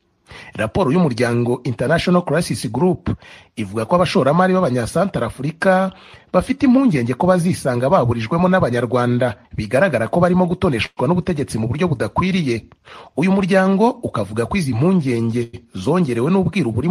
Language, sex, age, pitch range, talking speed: English, male, 40-59, 120-185 Hz, 120 wpm